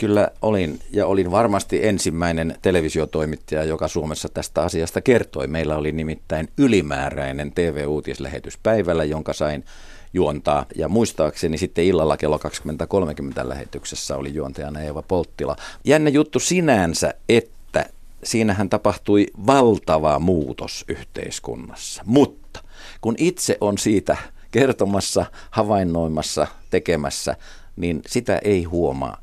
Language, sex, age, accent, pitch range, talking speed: Finnish, male, 50-69, native, 80-105 Hz, 110 wpm